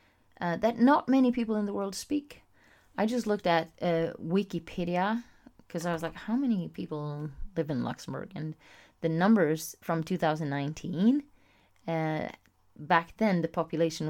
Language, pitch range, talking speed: English, 160-210 Hz, 150 wpm